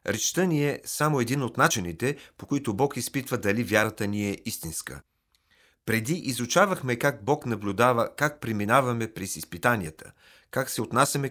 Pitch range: 105-135 Hz